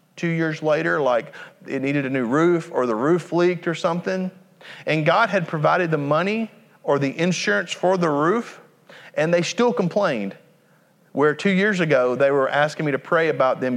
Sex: male